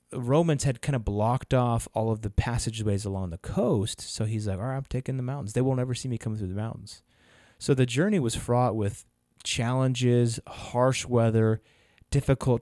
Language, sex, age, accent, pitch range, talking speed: English, male, 30-49, American, 105-130 Hz, 195 wpm